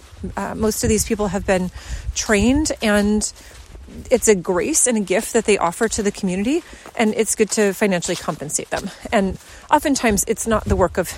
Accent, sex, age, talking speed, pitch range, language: American, female, 30-49, 190 wpm, 195-250 Hz, English